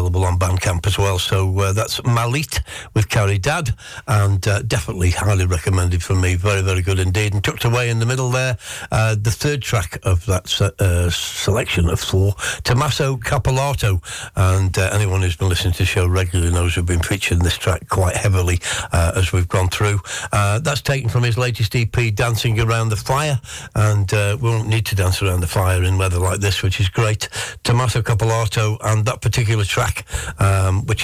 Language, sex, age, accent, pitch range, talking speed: English, male, 60-79, British, 95-115 Hz, 195 wpm